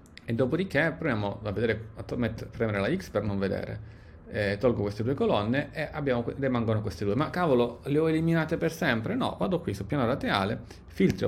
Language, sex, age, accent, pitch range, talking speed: Italian, male, 30-49, native, 105-130 Hz, 180 wpm